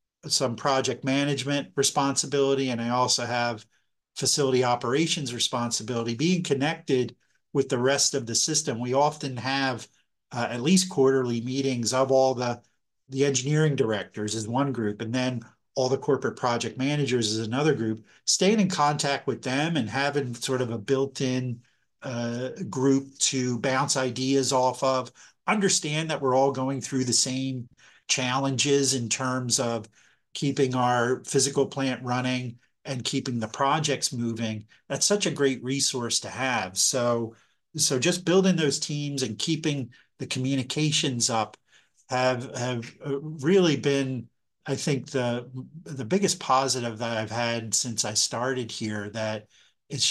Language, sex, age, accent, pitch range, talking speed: English, male, 50-69, American, 120-140 Hz, 145 wpm